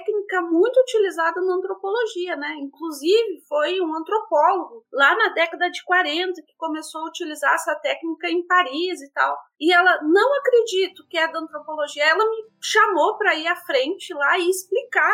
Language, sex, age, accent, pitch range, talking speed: Portuguese, female, 30-49, Brazilian, 310-395 Hz, 170 wpm